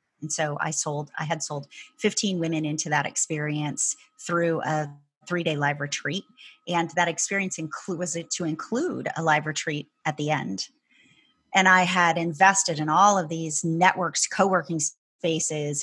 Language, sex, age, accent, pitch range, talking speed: English, female, 30-49, American, 155-190 Hz, 165 wpm